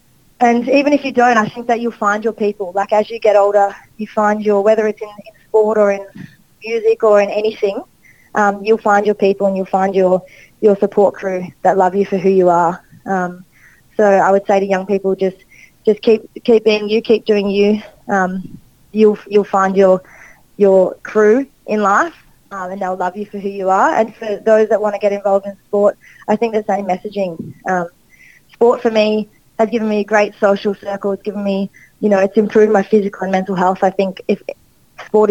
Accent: Australian